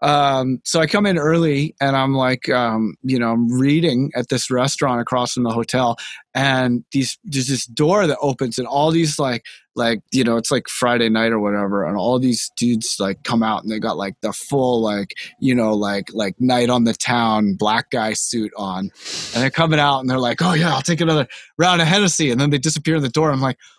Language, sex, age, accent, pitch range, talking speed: English, male, 20-39, American, 125-170 Hz, 230 wpm